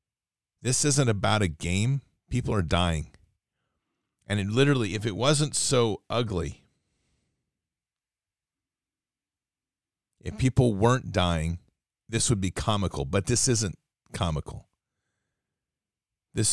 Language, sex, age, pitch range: English, male, 40-59, 95-110 Hz